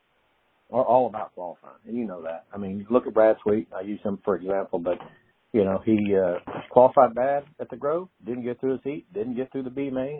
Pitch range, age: 100-120 Hz, 50-69